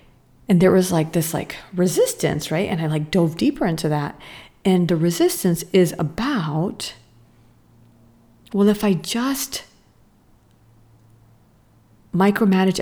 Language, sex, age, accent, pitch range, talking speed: English, female, 40-59, American, 115-180 Hz, 115 wpm